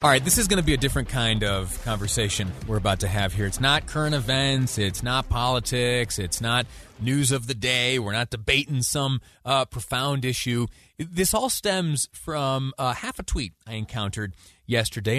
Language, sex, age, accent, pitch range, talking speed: English, male, 30-49, American, 110-145 Hz, 190 wpm